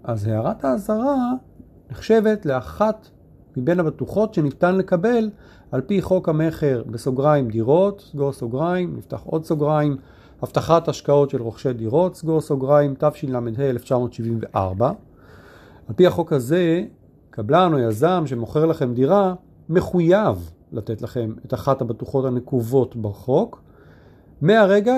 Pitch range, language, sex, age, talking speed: 125-180 Hz, Hebrew, male, 40-59, 115 wpm